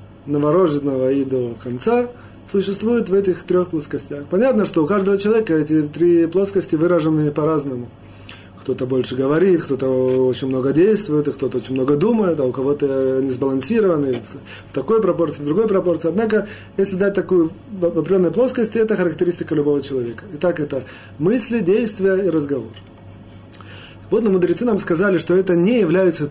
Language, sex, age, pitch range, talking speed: Russian, male, 30-49, 130-195 Hz, 155 wpm